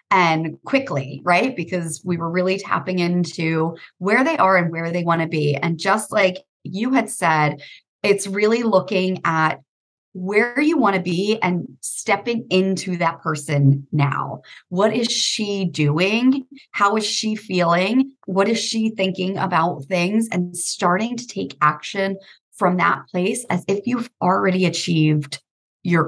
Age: 30-49